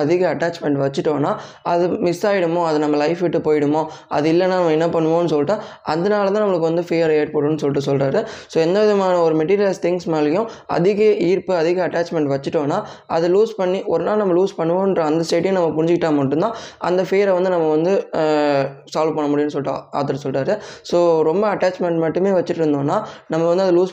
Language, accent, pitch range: Tamil, native, 155-185 Hz